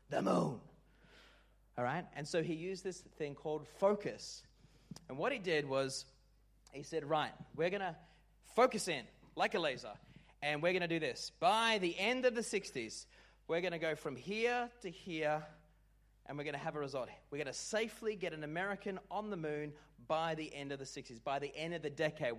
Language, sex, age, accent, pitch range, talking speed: English, male, 30-49, Australian, 140-185 Hz, 205 wpm